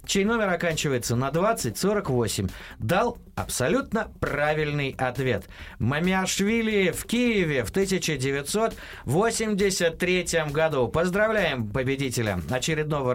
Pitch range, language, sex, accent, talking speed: 115-170 Hz, Russian, male, native, 80 wpm